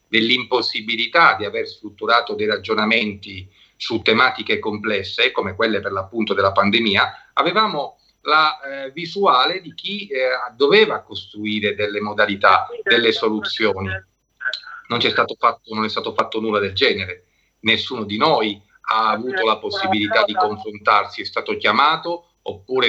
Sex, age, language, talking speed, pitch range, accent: male, 40-59, Italian, 130 wpm, 110-170 Hz, native